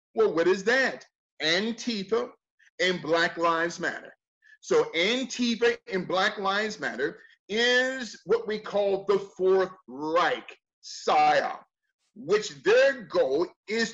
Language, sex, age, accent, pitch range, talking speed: English, male, 40-59, American, 160-250 Hz, 115 wpm